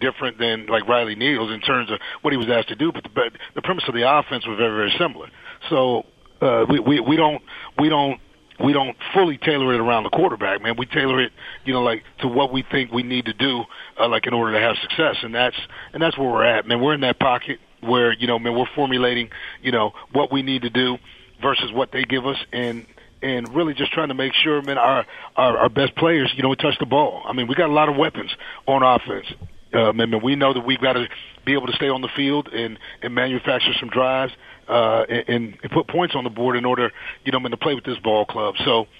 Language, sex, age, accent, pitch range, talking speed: English, male, 40-59, American, 120-140 Hz, 250 wpm